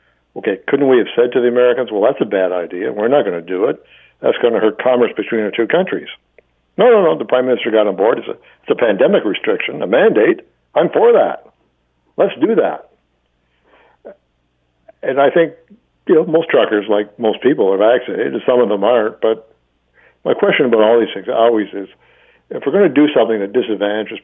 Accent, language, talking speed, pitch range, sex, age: American, English, 205 wpm, 95-125 Hz, male, 60-79